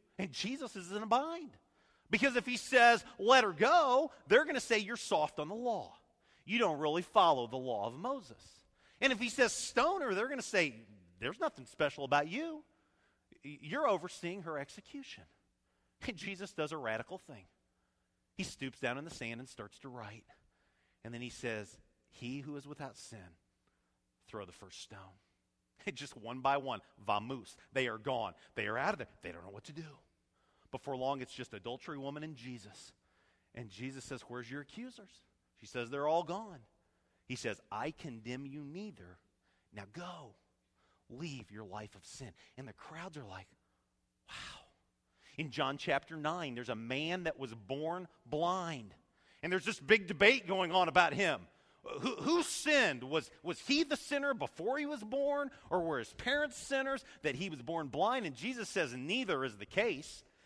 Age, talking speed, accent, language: 40-59, 185 wpm, American, English